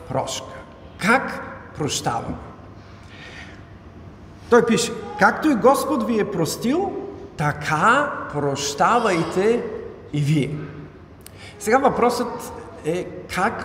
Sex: male